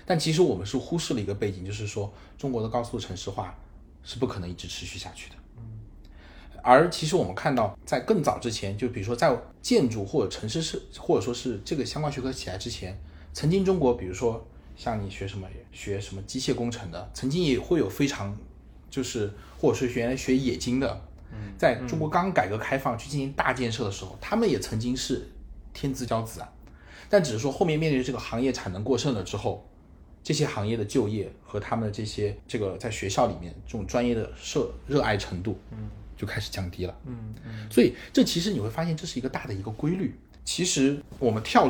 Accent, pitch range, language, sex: native, 100-130 Hz, Chinese, male